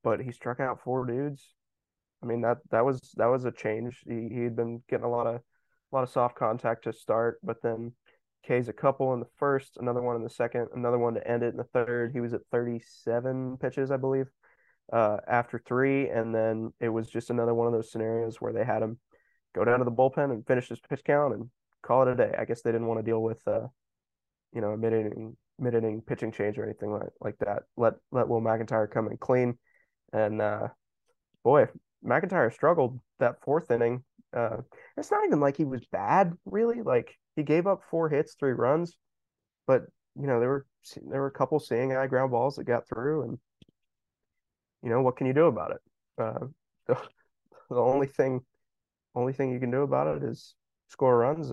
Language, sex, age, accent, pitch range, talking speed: English, male, 20-39, American, 115-135 Hz, 210 wpm